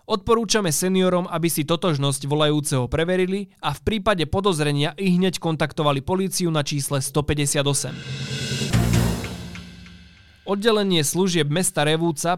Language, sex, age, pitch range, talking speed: Slovak, male, 20-39, 140-175 Hz, 105 wpm